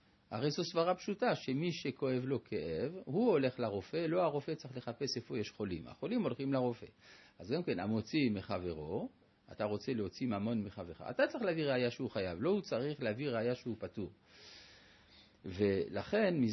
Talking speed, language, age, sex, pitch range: 165 wpm, Hebrew, 50-69, male, 110-150 Hz